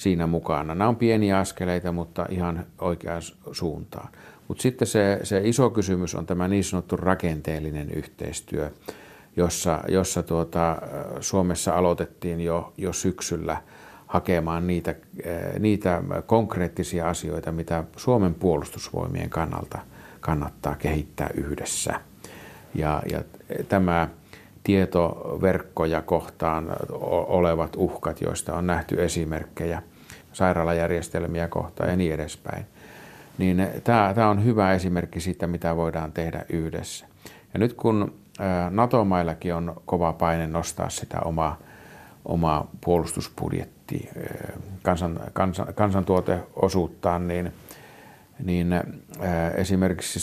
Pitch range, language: 85-95 Hz, Finnish